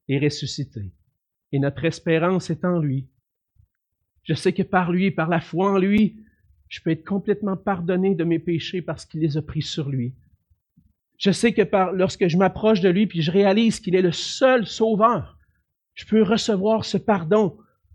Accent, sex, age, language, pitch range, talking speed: Canadian, male, 50-69, French, 130-215 Hz, 180 wpm